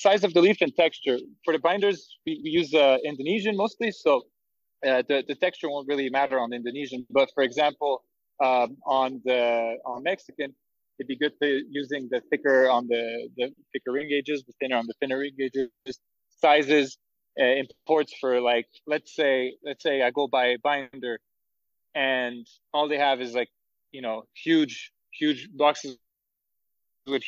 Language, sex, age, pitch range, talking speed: English, male, 20-39, 125-150 Hz, 175 wpm